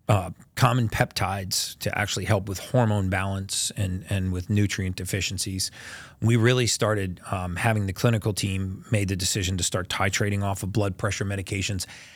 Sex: male